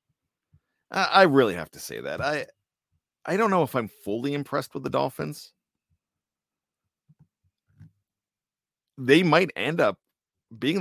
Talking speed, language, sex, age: 120 wpm, English, male, 50-69